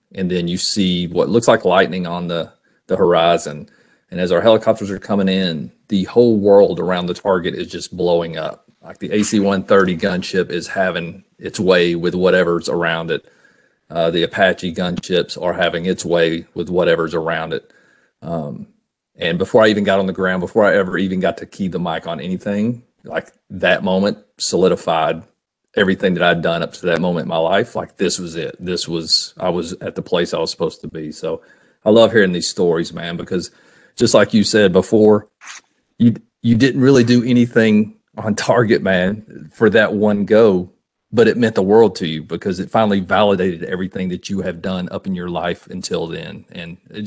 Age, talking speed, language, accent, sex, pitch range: 40-59, 195 wpm, English, American, male, 90-105 Hz